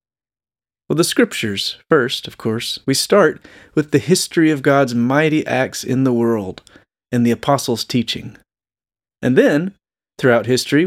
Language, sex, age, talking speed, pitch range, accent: English, male, 30-49, 145 wpm, 120-155 Hz, American